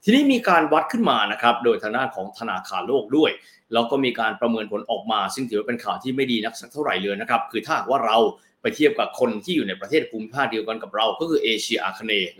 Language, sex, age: Thai, male, 20-39